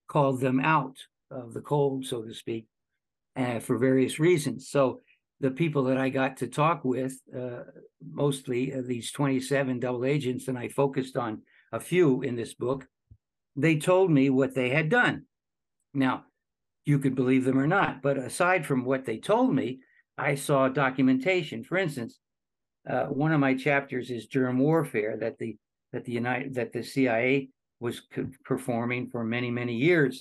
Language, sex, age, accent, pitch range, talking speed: English, male, 60-79, American, 125-140 Hz, 170 wpm